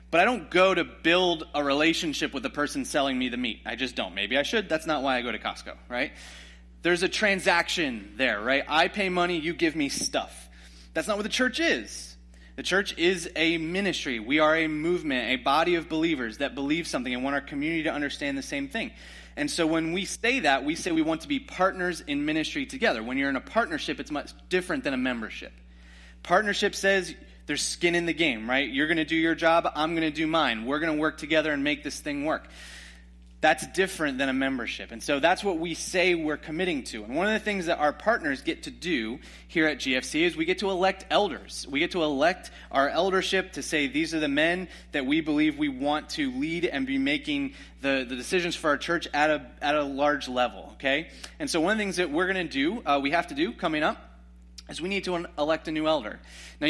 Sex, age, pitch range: male, 30-49, 140-195 Hz